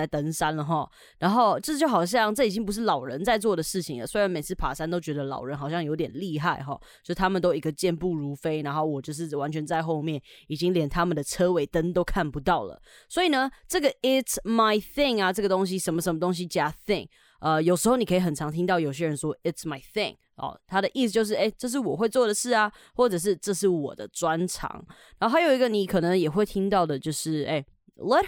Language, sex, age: Chinese, female, 20-39